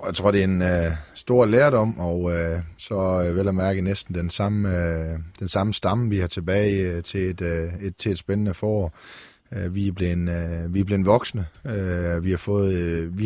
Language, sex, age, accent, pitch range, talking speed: Danish, male, 30-49, native, 90-105 Hz, 185 wpm